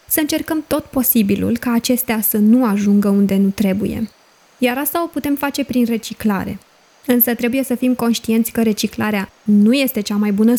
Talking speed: 175 wpm